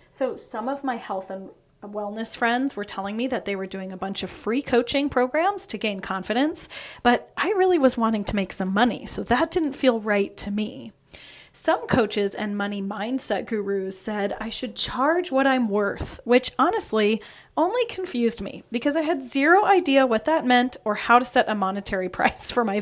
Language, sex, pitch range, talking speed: English, female, 210-285 Hz, 195 wpm